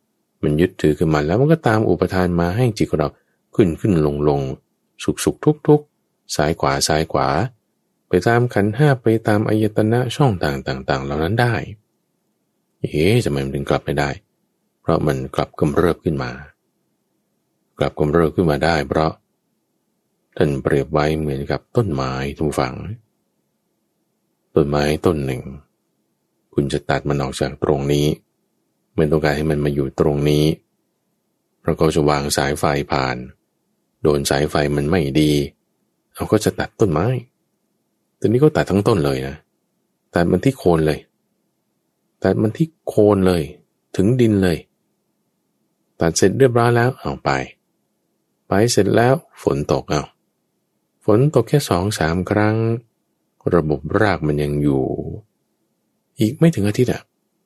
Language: English